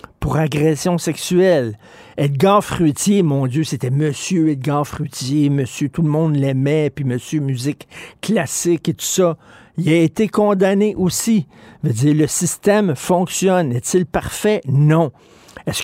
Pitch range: 140-175 Hz